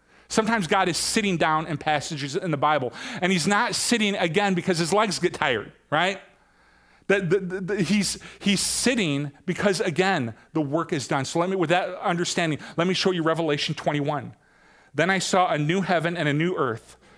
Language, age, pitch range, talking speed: English, 40-59, 170-200 Hz, 180 wpm